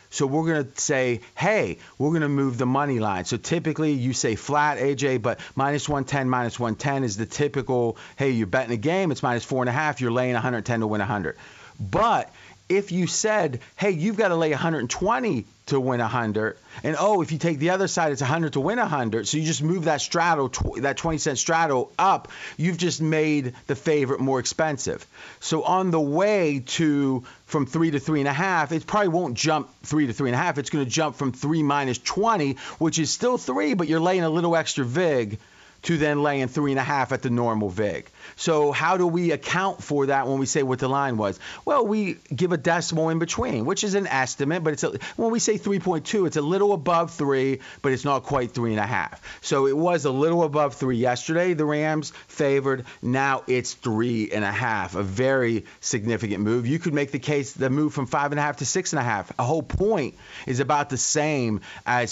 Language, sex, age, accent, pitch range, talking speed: English, male, 30-49, American, 125-160 Hz, 220 wpm